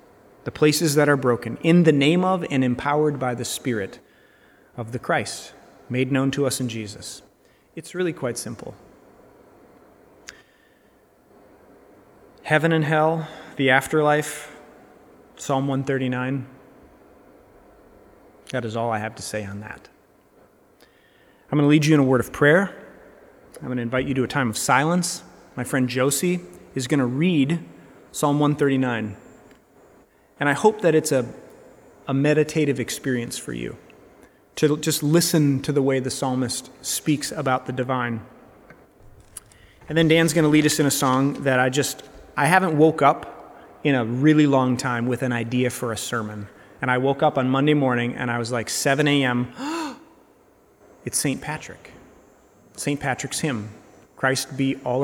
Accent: American